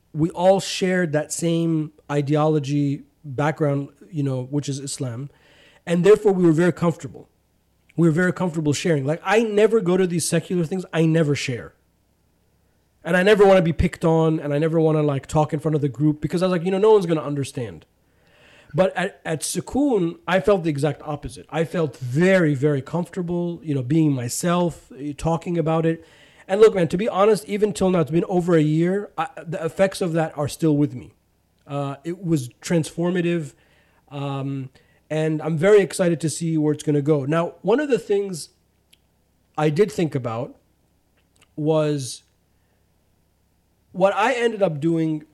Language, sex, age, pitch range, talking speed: English, male, 30-49, 140-175 Hz, 185 wpm